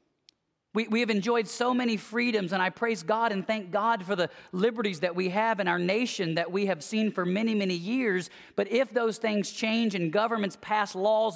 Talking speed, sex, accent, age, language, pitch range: 210 wpm, male, American, 40-59, English, 180-220 Hz